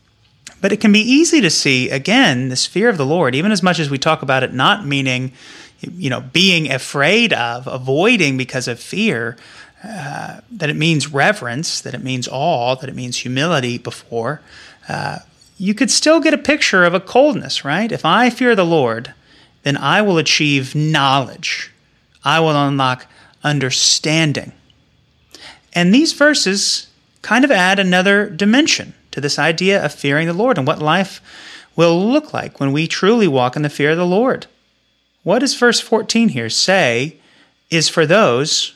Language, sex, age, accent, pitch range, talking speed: English, male, 30-49, American, 140-215 Hz, 170 wpm